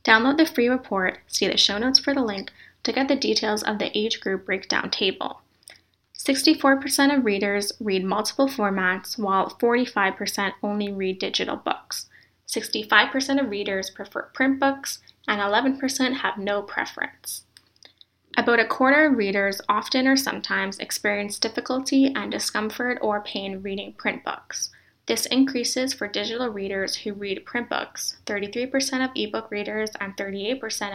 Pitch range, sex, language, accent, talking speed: 200-255 Hz, female, English, American, 145 wpm